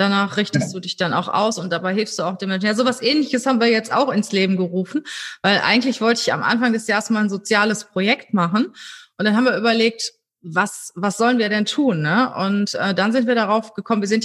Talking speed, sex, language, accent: 245 wpm, female, German, German